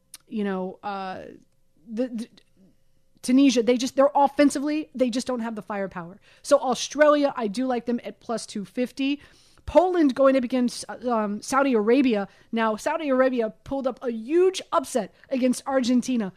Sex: female